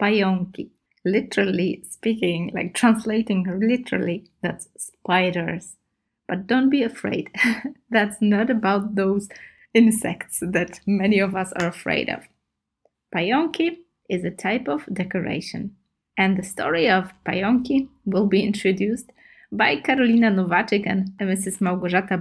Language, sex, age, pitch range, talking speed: Polish, female, 20-39, 185-240 Hz, 120 wpm